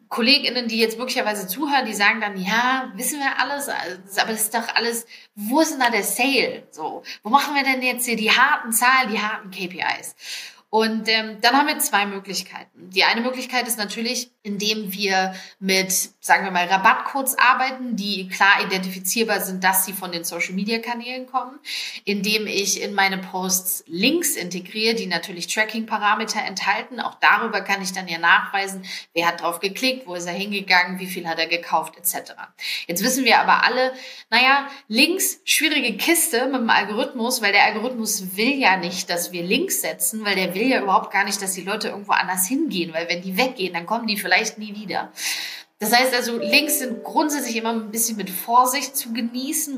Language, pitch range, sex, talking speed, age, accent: German, 195-255 Hz, female, 190 wpm, 30-49, German